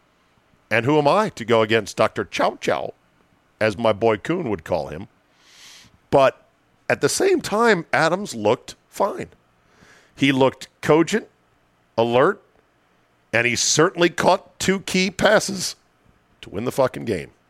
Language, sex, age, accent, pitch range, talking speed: English, male, 50-69, American, 115-150 Hz, 140 wpm